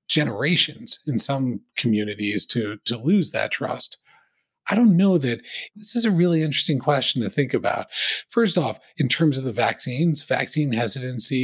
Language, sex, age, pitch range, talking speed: English, male, 40-59, 120-165 Hz, 165 wpm